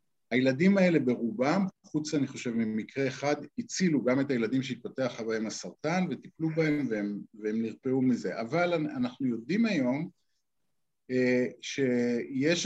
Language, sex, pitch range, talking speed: Hebrew, male, 130-175 Hz, 120 wpm